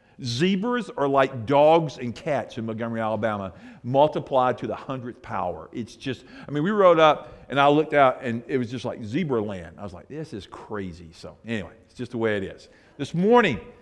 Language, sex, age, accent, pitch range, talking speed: English, male, 50-69, American, 140-185 Hz, 205 wpm